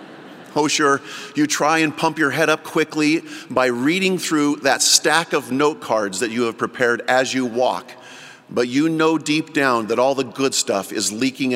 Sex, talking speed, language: male, 190 wpm, English